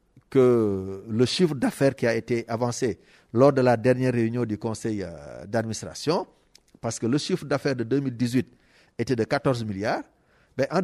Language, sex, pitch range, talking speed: French, male, 120-150 Hz, 165 wpm